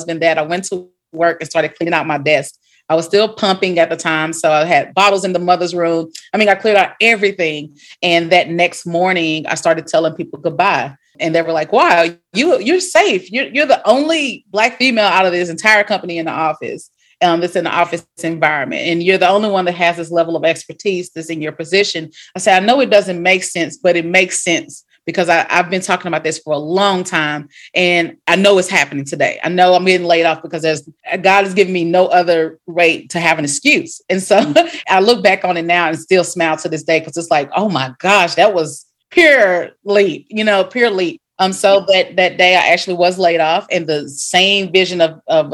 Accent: American